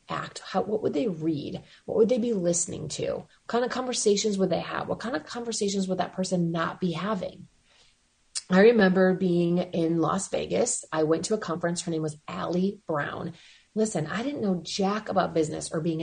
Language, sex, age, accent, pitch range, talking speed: English, female, 30-49, American, 175-220 Hz, 200 wpm